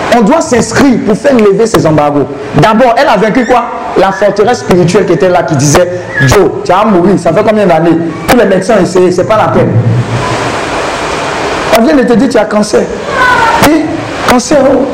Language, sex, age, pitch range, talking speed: French, male, 50-69, 185-265 Hz, 205 wpm